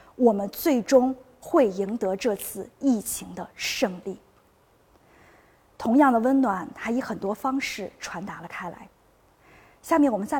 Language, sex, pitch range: Chinese, female, 220-285 Hz